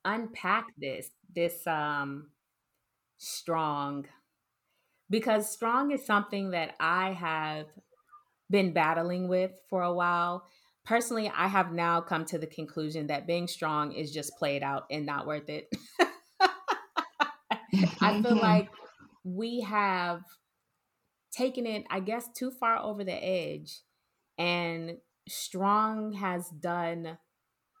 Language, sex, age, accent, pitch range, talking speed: English, female, 20-39, American, 160-200 Hz, 120 wpm